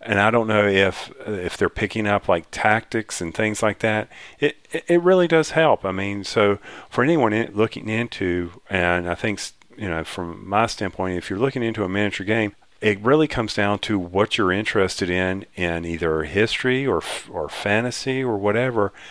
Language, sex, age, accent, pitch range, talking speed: English, male, 40-59, American, 95-110 Hz, 190 wpm